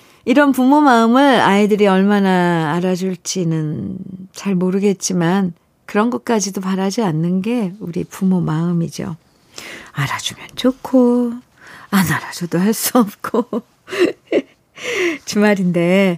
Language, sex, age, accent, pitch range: Korean, female, 40-59, native, 185-265 Hz